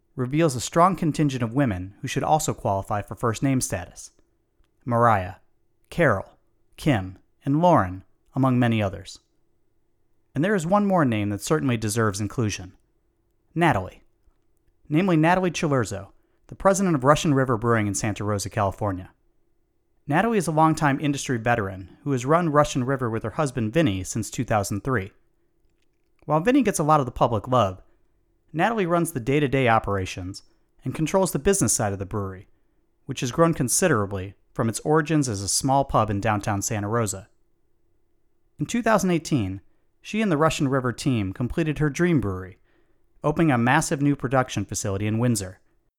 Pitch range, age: 105-155 Hz, 30-49